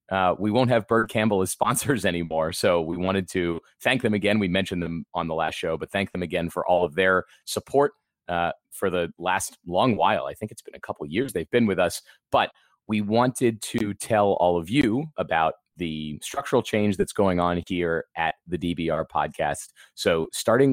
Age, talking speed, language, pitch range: 30-49, 210 wpm, English, 85-105 Hz